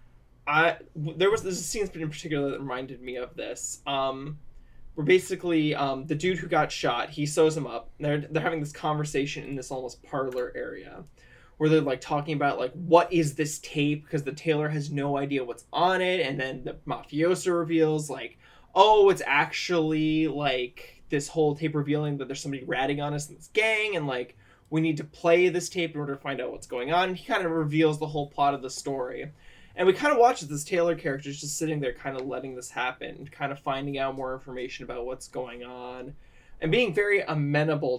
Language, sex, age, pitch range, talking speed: English, male, 20-39, 135-160 Hz, 215 wpm